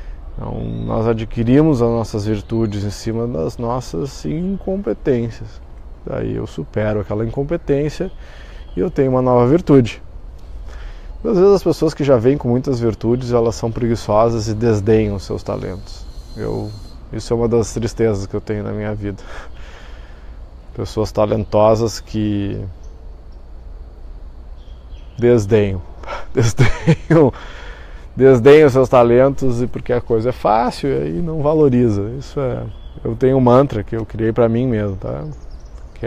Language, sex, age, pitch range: Portuguese, male, 20-39, 95-130 Hz